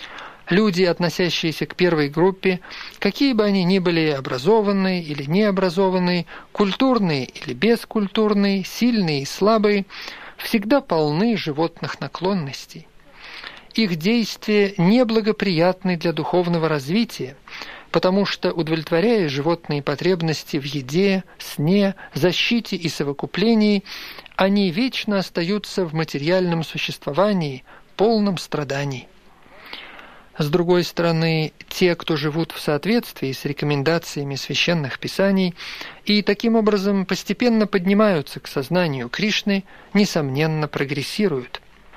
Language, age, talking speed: Russian, 50-69, 100 wpm